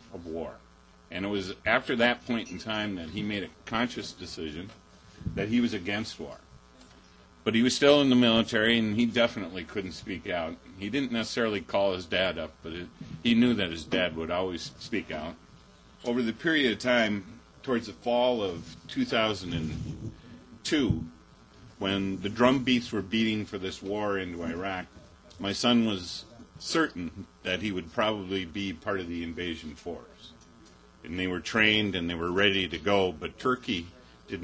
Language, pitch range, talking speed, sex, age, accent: English, 85-110 Hz, 170 wpm, male, 50-69, American